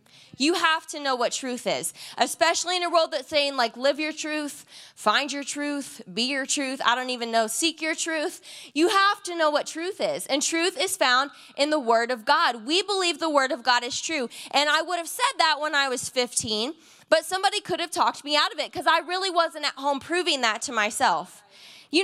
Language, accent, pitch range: English, American, 255-330 Hz